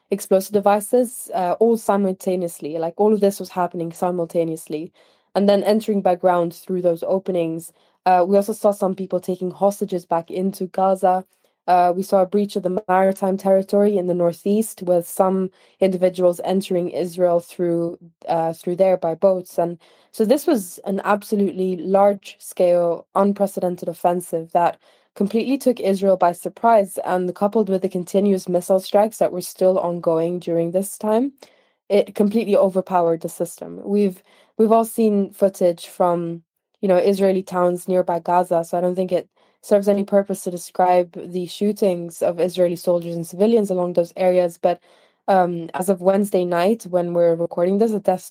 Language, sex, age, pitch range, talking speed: English, female, 20-39, 175-200 Hz, 165 wpm